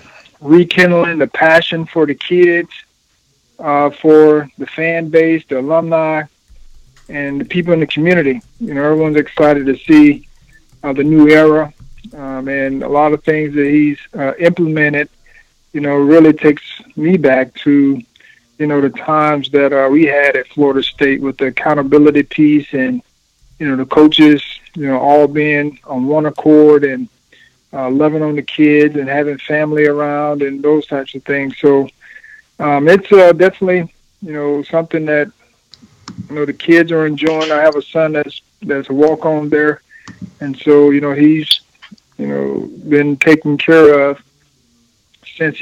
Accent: American